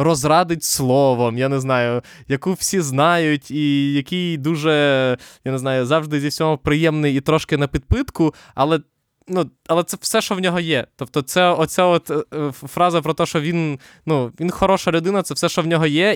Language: Ukrainian